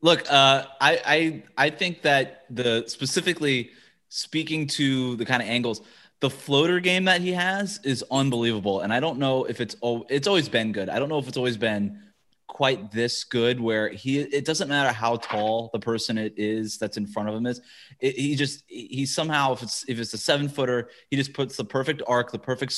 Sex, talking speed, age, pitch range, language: male, 215 wpm, 20-39, 110-135 Hz, English